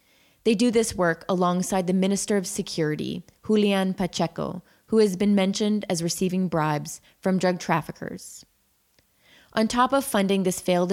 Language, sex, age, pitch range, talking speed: English, female, 20-39, 165-205 Hz, 150 wpm